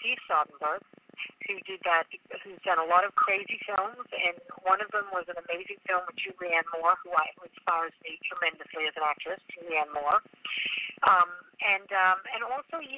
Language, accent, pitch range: English, American, 175-205 Hz